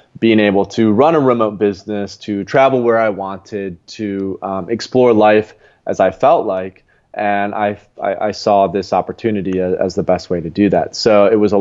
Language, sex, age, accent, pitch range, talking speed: English, male, 20-39, American, 100-115 Hz, 195 wpm